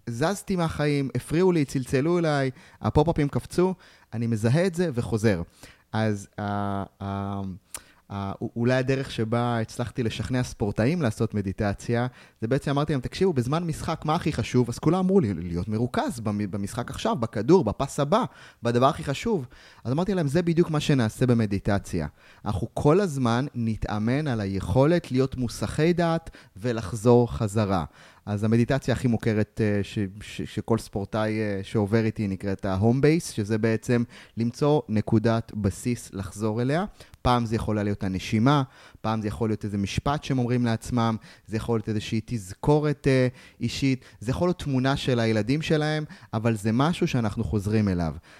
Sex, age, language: male, 30-49, Hebrew